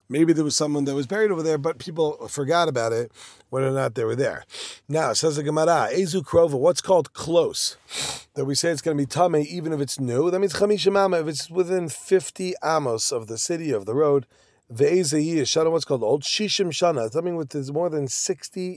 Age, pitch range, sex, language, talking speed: 40-59, 145-175 Hz, male, English, 215 wpm